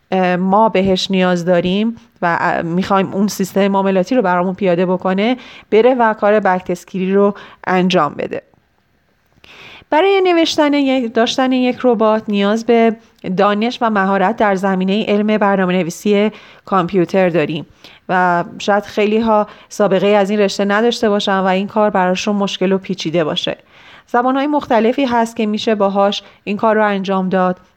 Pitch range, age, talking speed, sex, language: 185-215 Hz, 30-49, 140 wpm, female, Persian